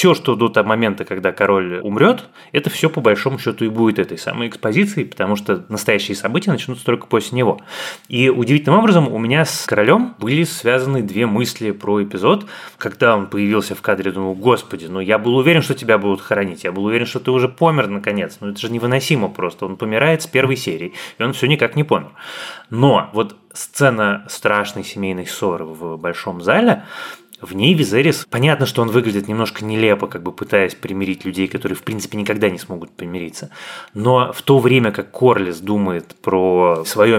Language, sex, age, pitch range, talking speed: Russian, male, 20-39, 100-130 Hz, 190 wpm